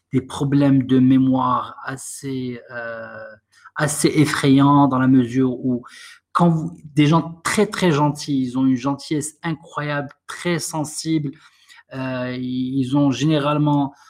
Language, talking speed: French, 130 wpm